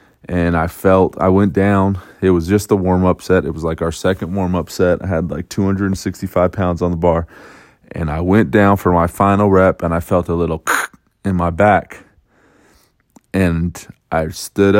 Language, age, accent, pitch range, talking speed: English, 20-39, American, 85-95 Hz, 185 wpm